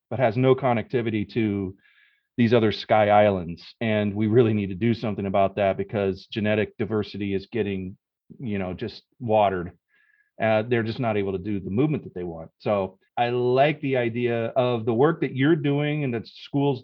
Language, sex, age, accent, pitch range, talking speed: English, male, 30-49, American, 105-130 Hz, 190 wpm